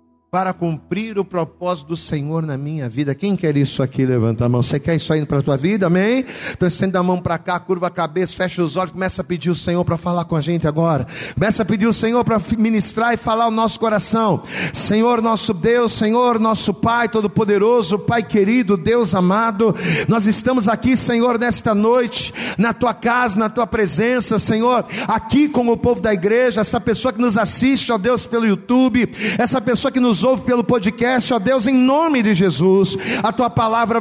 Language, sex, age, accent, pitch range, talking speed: Portuguese, male, 40-59, Brazilian, 190-245 Hz, 205 wpm